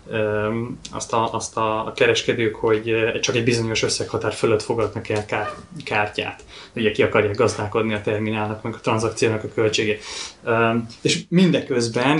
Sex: male